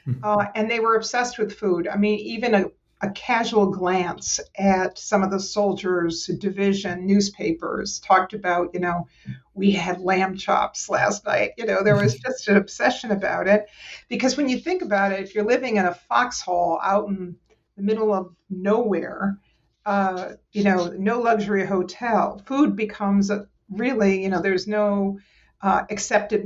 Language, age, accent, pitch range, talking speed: English, 50-69, American, 185-215 Hz, 165 wpm